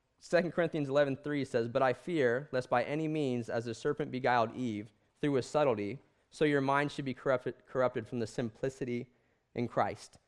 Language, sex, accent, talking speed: English, male, American, 180 wpm